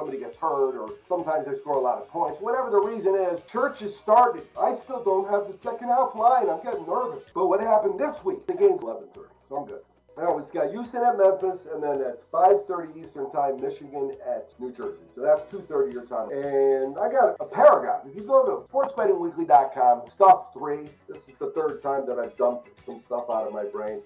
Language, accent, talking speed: English, American, 215 wpm